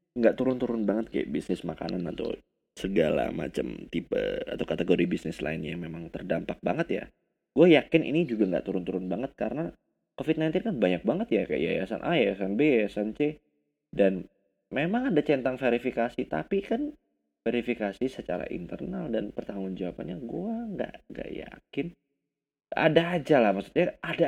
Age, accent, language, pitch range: 20-39, native, Indonesian, 105-160 Hz